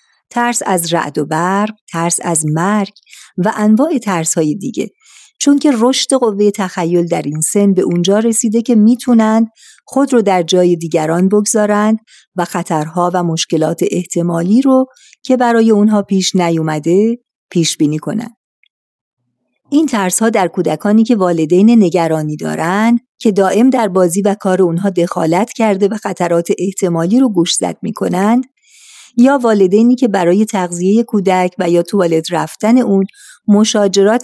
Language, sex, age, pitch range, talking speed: Persian, female, 50-69, 175-225 Hz, 145 wpm